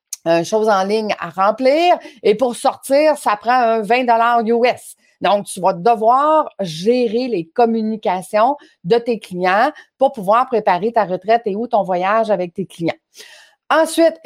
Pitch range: 205-265 Hz